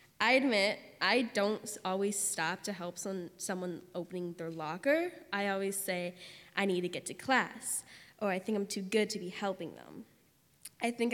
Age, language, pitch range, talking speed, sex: 10-29, English, 185-220 Hz, 180 wpm, female